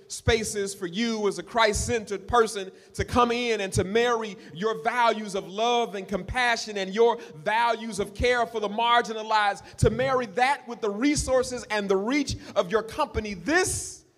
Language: English